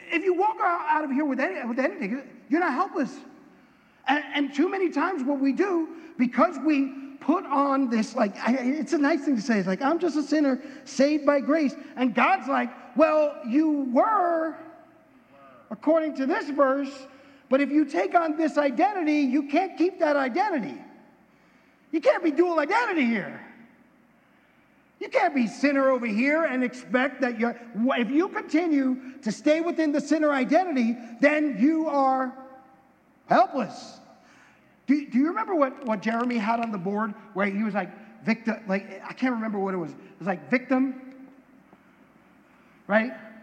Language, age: English, 50-69